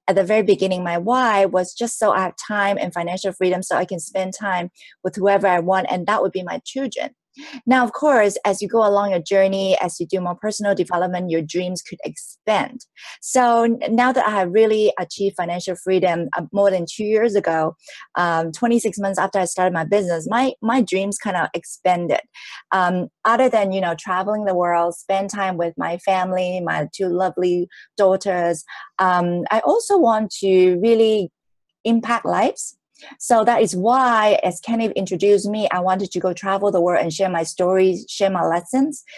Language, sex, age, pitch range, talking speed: English, female, 30-49, 180-220 Hz, 190 wpm